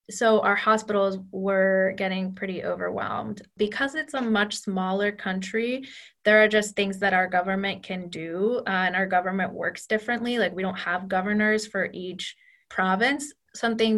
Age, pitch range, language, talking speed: 20-39, 185-220 Hz, English, 160 wpm